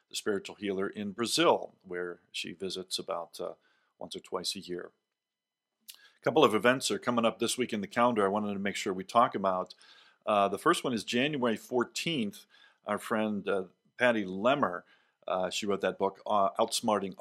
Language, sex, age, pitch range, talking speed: English, male, 50-69, 95-125 Hz, 190 wpm